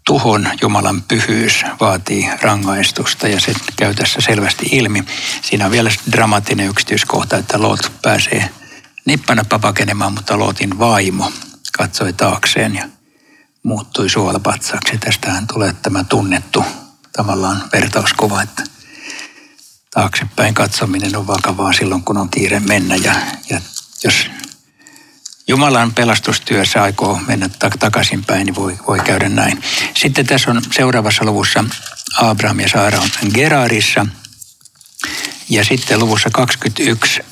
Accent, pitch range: native, 100-120 Hz